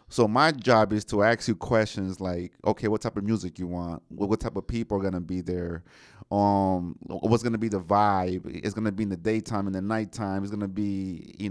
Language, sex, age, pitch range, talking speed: English, male, 30-49, 100-120 Hz, 230 wpm